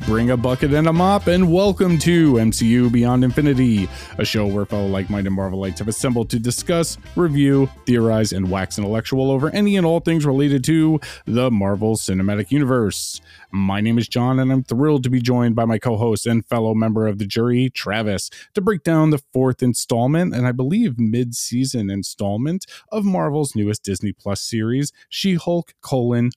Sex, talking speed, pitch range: male, 175 wpm, 115-160 Hz